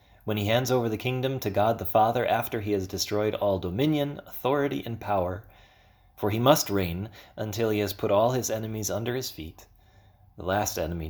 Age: 30-49